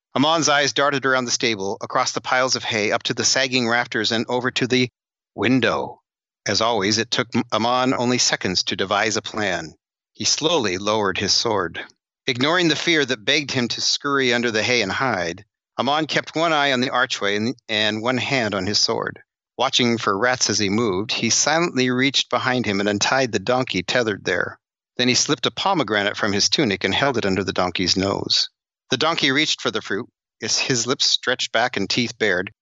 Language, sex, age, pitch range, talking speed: English, male, 40-59, 110-140 Hz, 200 wpm